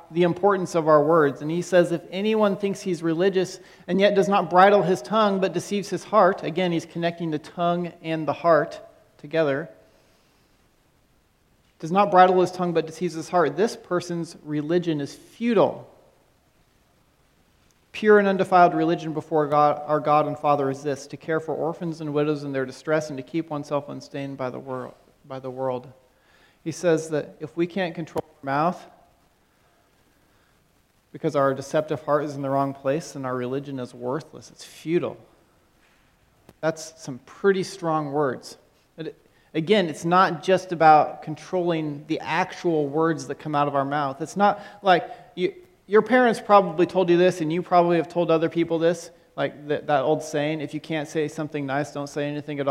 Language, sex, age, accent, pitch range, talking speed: English, male, 40-59, American, 150-180 Hz, 175 wpm